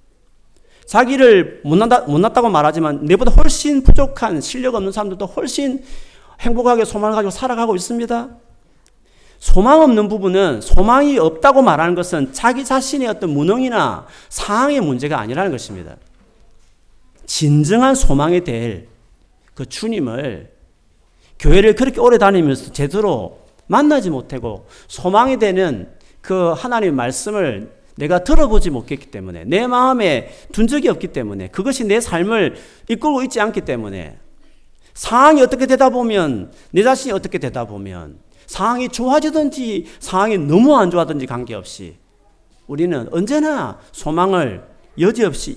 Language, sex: Korean, male